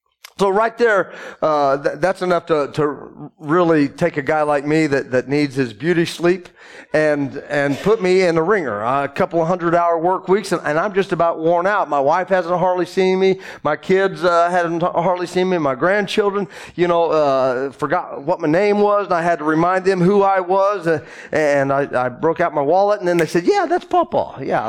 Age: 40-59